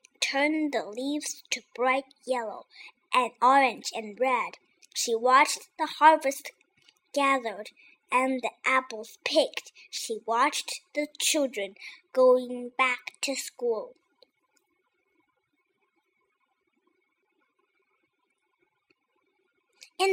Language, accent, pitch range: Chinese, American, 245-325 Hz